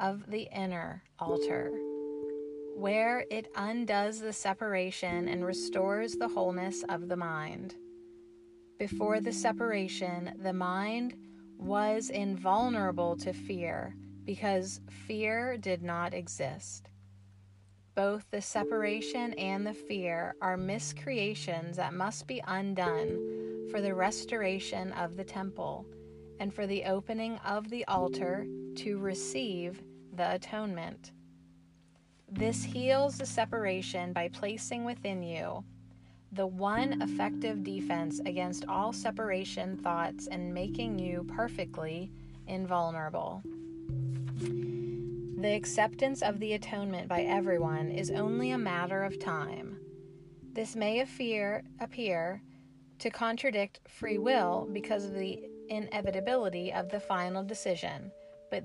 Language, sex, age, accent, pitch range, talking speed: English, female, 30-49, American, 135-205 Hz, 115 wpm